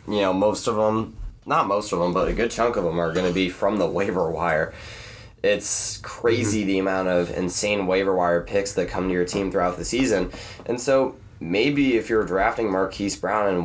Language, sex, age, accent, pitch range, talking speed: English, male, 20-39, American, 95-110 Hz, 215 wpm